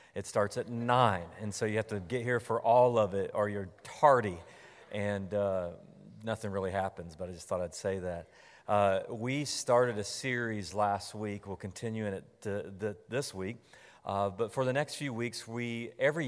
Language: English